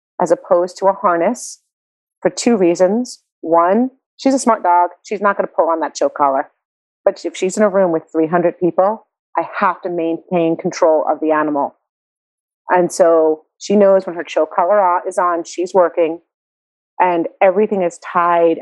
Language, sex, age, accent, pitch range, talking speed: English, female, 30-49, American, 165-190 Hz, 175 wpm